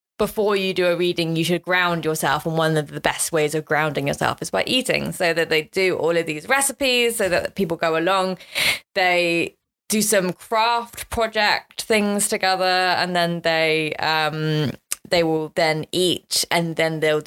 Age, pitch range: 20-39, 165-220 Hz